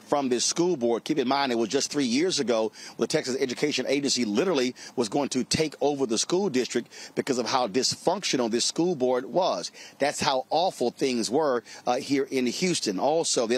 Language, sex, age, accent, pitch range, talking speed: English, male, 40-59, American, 120-150 Hz, 205 wpm